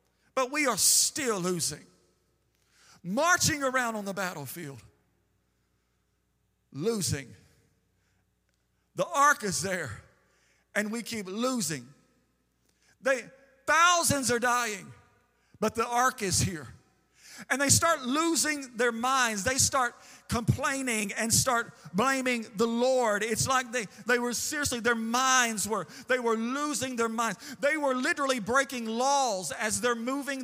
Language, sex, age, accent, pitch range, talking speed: English, male, 50-69, American, 180-265 Hz, 125 wpm